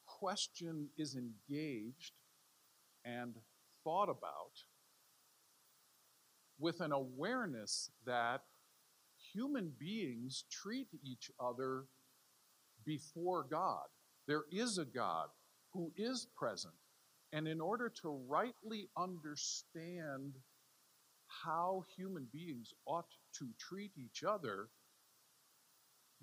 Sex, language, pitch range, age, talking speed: male, English, 135-175 Hz, 50-69, 90 wpm